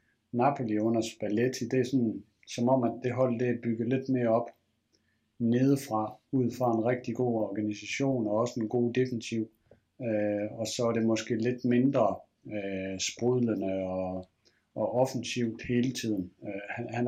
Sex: male